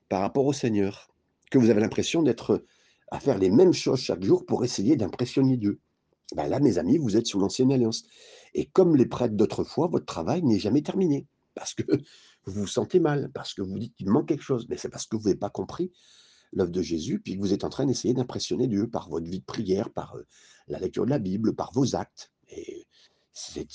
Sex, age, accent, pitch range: male, 60-79, French, 110-150 Hz